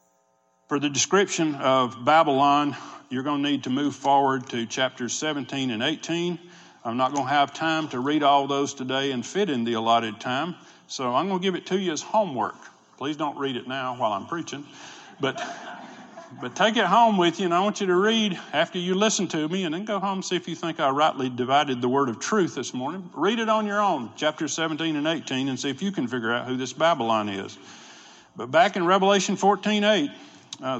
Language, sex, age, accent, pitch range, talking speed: English, male, 50-69, American, 130-170 Hz, 225 wpm